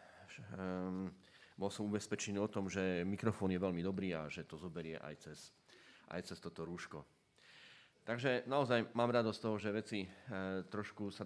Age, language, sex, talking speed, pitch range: 30-49, Slovak, male, 170 wpm, 95-125 Hz